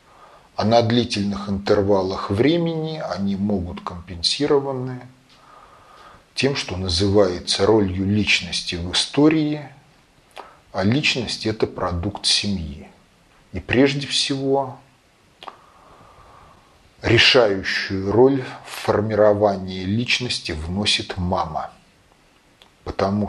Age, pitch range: 40-59, 95-115 Hz